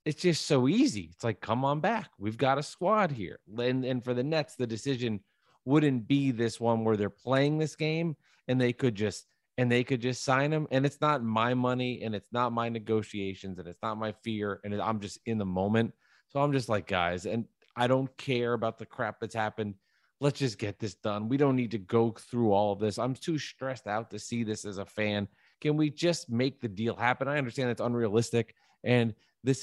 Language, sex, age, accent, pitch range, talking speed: English, male, 30-49, American, 110-135 Hz, 225 wpm